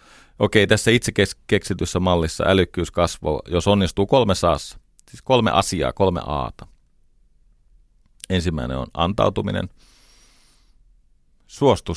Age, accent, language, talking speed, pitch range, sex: 40-59, native, Finnish, 100 wpm, 85-105 Hz, male